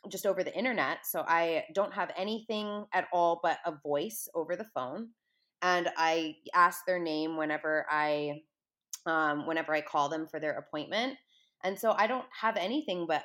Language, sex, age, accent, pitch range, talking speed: English, female, 20-39, American, 155-190 Hz, 175 wpm